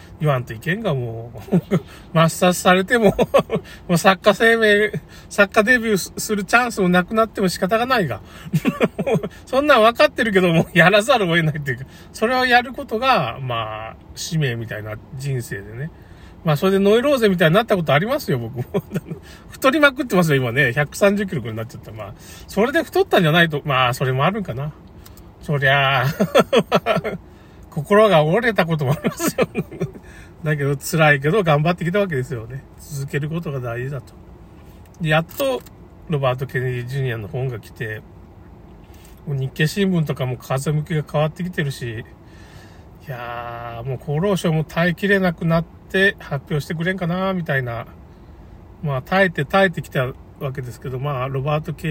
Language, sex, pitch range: Japanese, male, 130-190 Hz